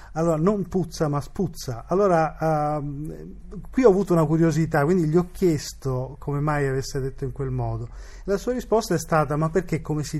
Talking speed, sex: 190 wpm, male